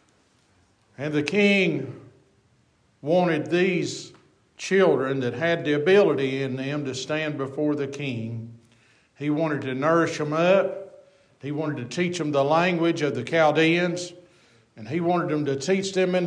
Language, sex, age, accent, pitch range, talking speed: English, male, 50-69, American, 140-185 Hz, 150 wpm